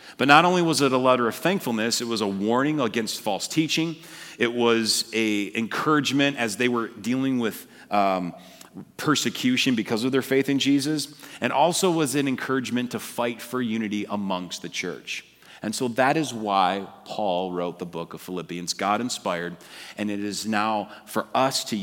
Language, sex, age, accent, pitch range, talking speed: English, male, 40-59, American, 100-135 Hz, 180 wpm